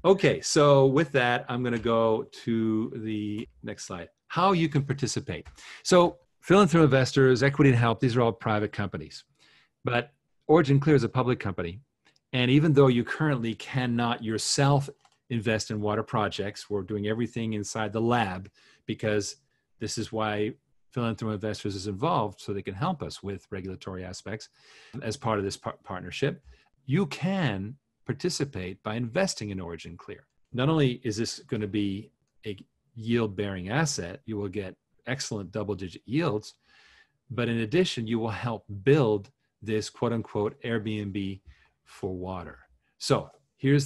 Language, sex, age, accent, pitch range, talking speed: English, male, 40-59, American, 105-140 Hz, 155 wpm